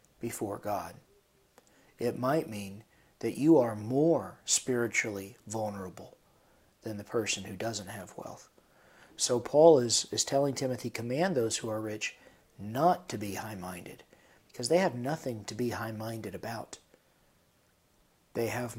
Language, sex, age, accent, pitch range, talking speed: English, male, 40-59, American, 110-140 Hz, 135 wpm